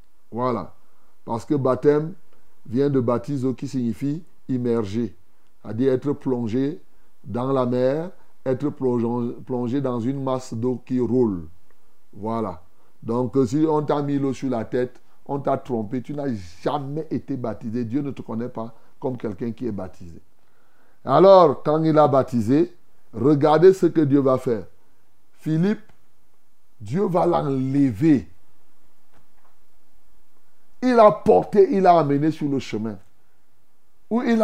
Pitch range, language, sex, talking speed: 120-175 Hz, French, male, 135 wpm